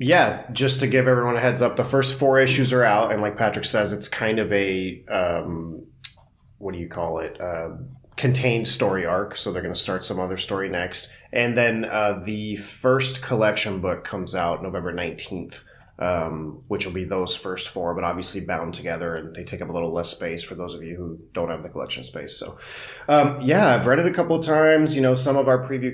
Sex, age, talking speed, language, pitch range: male, 30-49, 225 wpm, English, 95-125 Hz